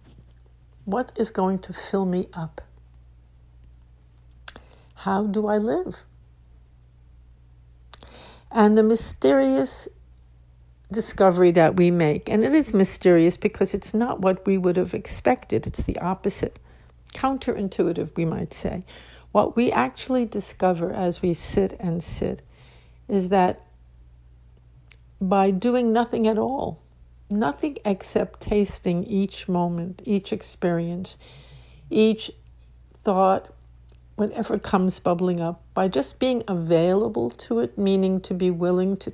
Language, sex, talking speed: English, female, 120 wpm